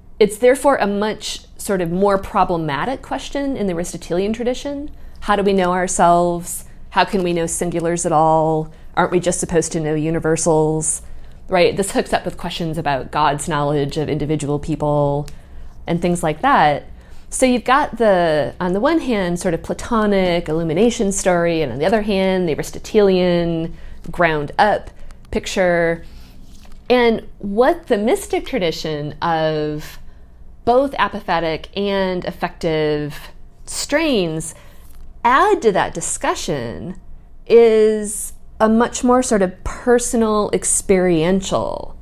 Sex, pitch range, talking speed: female, 155-205 Hz, 135 wpm